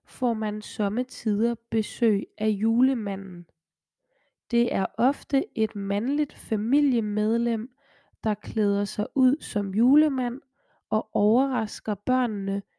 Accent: native